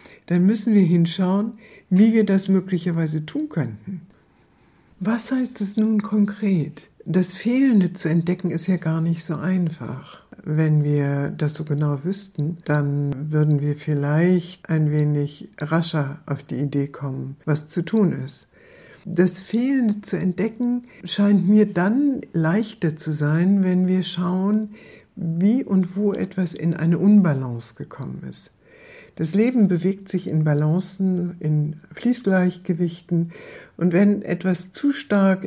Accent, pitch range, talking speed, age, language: German, 150-195 Hz, 135 wpm, 60-79, German